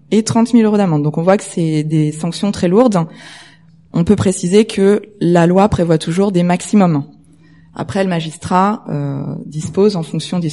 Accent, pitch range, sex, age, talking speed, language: French, 160-205 Hz, female, 20-39, 180 wpm, French